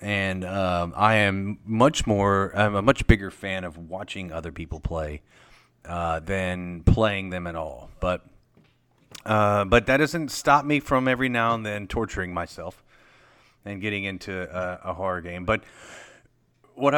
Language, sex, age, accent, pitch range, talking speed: English, male, 30-49, American, 95-115 Hz, 160 wpm